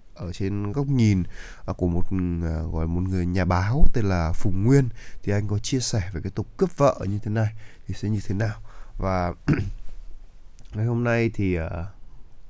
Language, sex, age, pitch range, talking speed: Vietnamese, male, 20-39, 95-125 Hz, 185 wpm